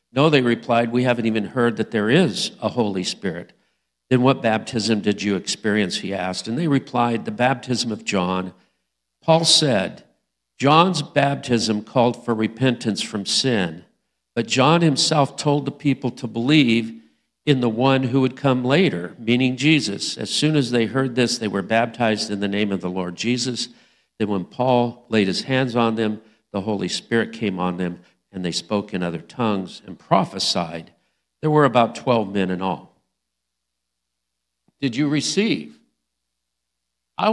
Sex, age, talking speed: male, 50-69, 165 wpm